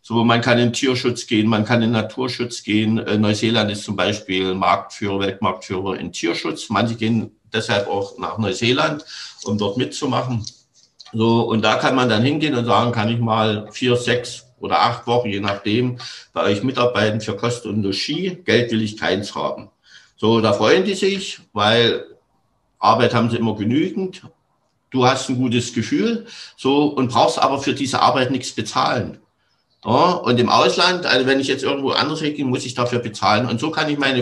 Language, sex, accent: German, male, German